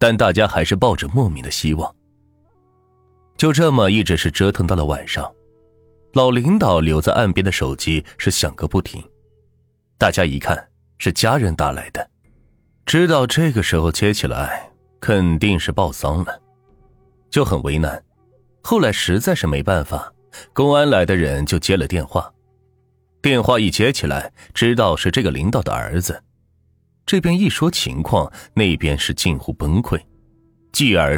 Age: 30-49